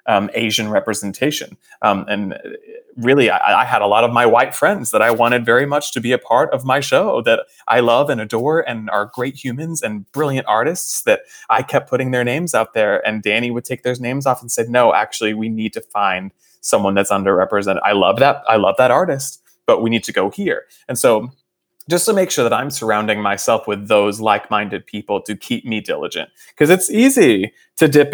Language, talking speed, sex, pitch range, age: English, 215 wpm, male, 105-130 Hz, 20-39